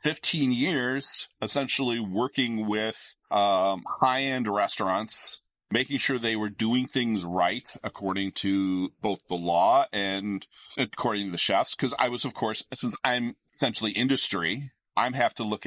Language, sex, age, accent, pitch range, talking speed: English, male, 40-59, American, 95-120 Hz, 145 wpm